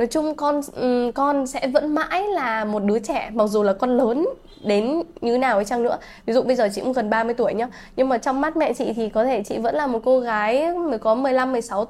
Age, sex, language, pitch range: 10-29, female, Vietnamese, 215-270 Hz